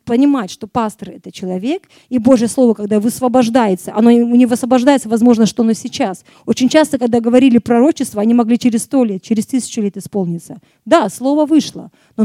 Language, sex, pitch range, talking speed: Russian, female, 200-255 Hz, 170 wpm